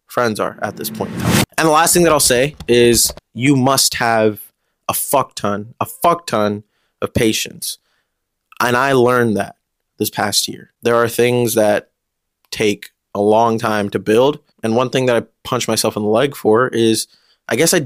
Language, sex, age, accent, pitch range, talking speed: English, male, 20-39, American, 105-120 Hz, 190 wpm